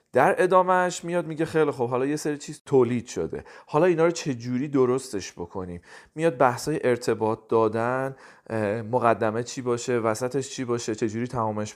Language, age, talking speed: Persian, 40-59, 155 wpm